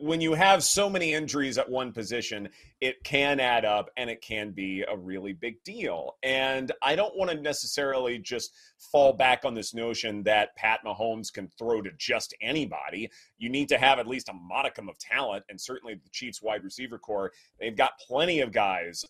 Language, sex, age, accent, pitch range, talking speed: English, male, 30-49, American, 110-145 Hz, 200 wpm